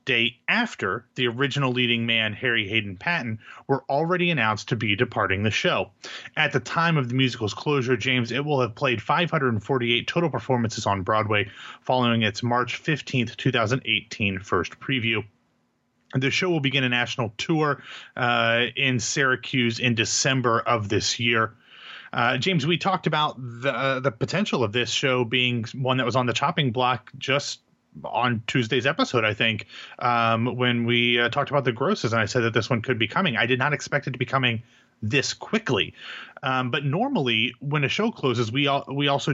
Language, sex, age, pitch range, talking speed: English, male, 30-49, 115-140 Hz, 180 wpm